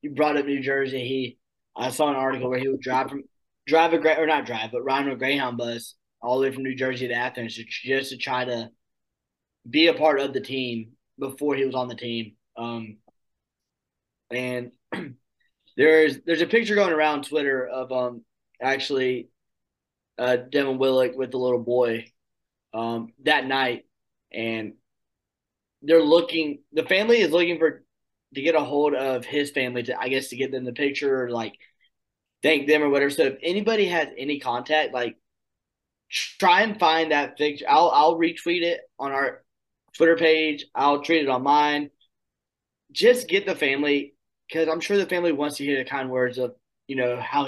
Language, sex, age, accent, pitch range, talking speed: English, male, 20-39, American, 125-155 Hz, 180 wpm